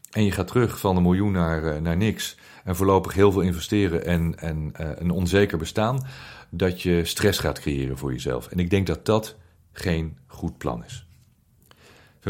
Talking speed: 185 wpm